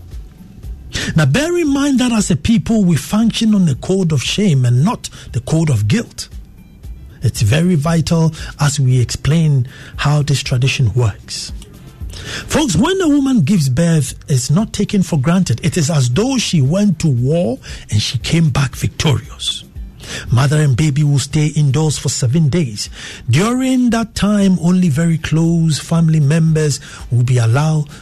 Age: 60-79